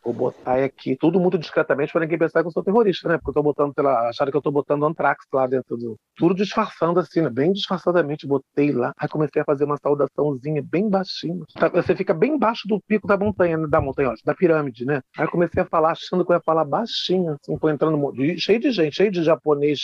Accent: Brazilian